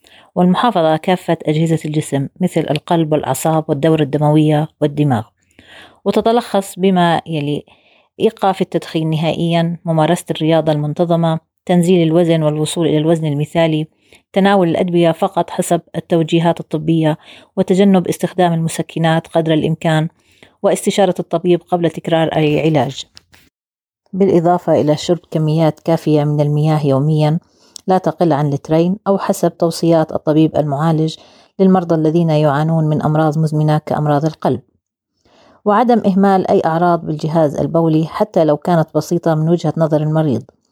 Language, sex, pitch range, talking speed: Arabic, female, 155-175 Hz, 120 wpm